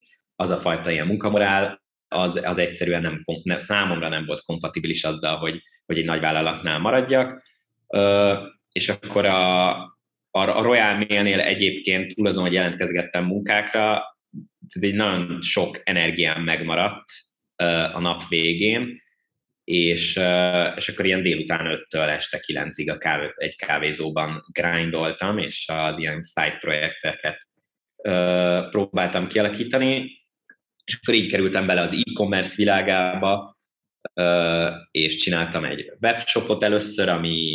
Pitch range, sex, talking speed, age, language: 85-100 Hz, male, 125 wpm, 20-39, Hungarian